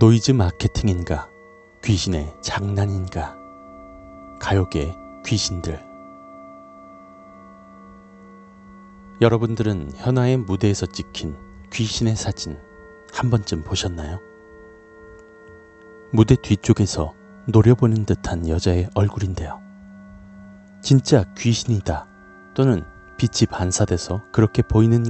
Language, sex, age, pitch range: Korean, male, 40-59, 90-120 Hz